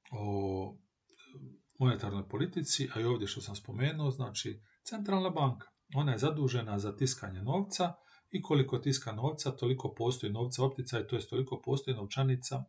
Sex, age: male, 40-59